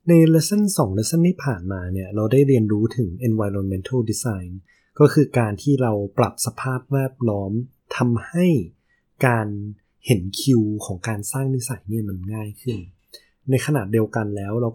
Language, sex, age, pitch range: Thai, male, 20-39, 105-135 Hz